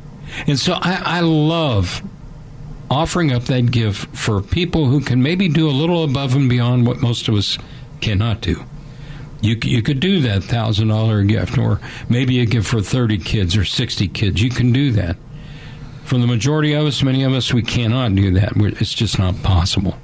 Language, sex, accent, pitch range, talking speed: English, male, American, 115-145 Hz, 190 wpm